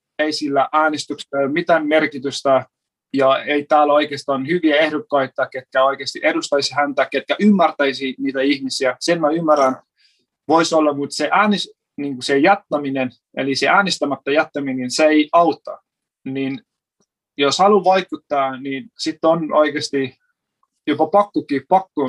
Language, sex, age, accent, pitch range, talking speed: Finnish, male, 30-49, native, 140-175 Hz, 130 wpm